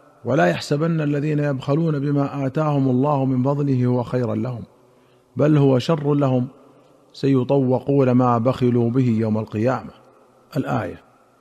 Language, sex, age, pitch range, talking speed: Arabic, male, 50-69, 125-145 Hz, 120 wpm